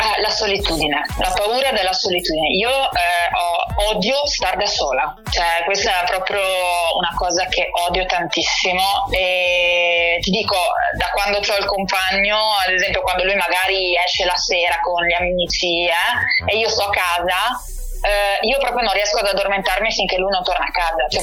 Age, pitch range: 20-39, 175-205 Hz